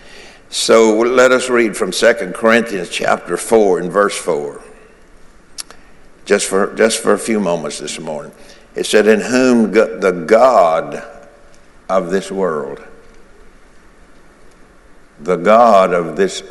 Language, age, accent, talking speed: English, 60-79, American, 120 wpm